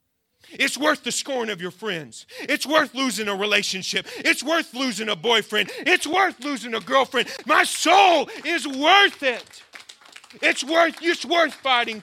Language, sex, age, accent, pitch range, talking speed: English, male, 40-59, American, 155-235 Hz, 160 wpm